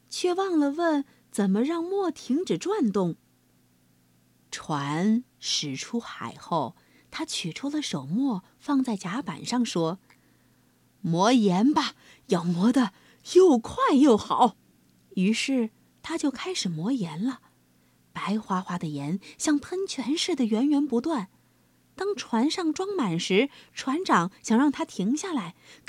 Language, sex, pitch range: Chinese, female, 195-295 Hz